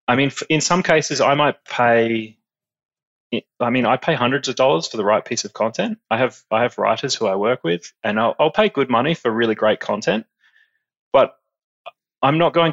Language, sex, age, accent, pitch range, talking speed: English, male, 20-39, Australian, 110-135 Hz, 205 wpm